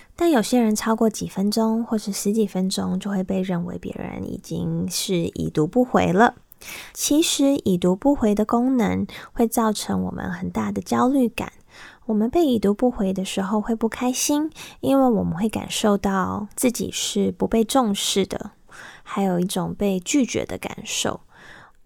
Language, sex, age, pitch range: Chinese, female, 20-39, 185-235 Hz